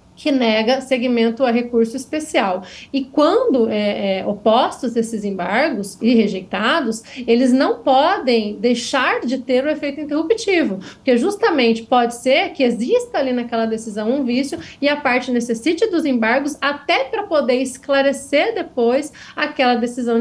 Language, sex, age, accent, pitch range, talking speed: Portuguese, female, 40-59, Brazilian, 230-280 Hz, 145 wpm